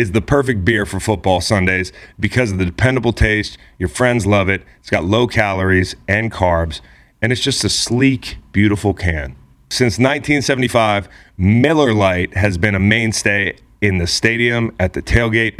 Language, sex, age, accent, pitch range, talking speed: English, male, 30-49, American, 95-120 Hz, 165 wpm